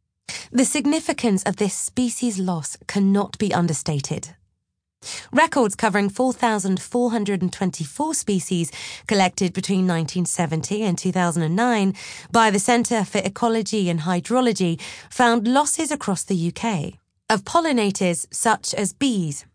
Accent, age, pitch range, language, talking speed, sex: British, 30-49, 175-245 Hz, English, 105 wpm, female